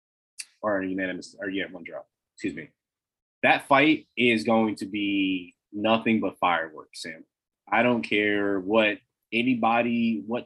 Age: 20-39